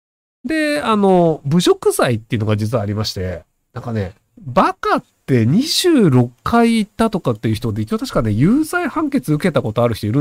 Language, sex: Japanese, male